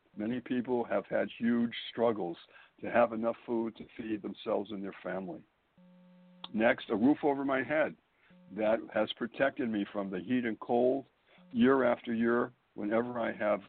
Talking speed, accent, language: 160 wpm, American, English